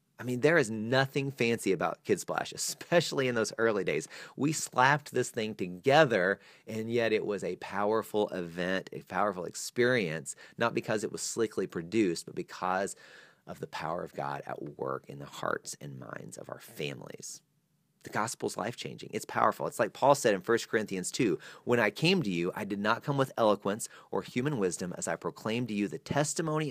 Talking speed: 195 wpm